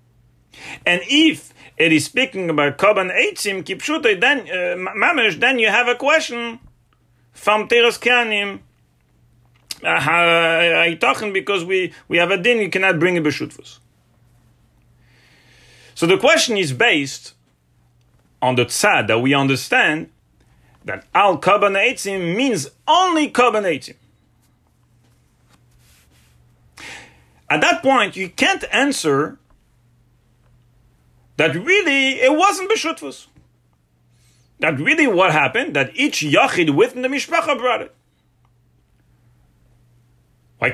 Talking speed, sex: 105 wpm, male